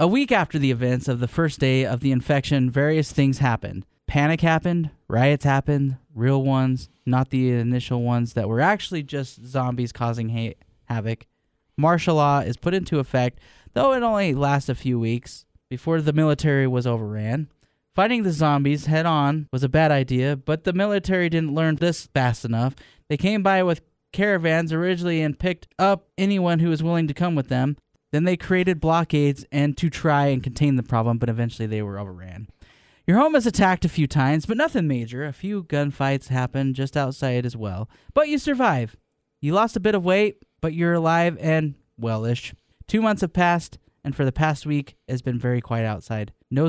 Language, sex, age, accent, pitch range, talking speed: English, male, 10-29, American, 120-165 Hz, 190 wpm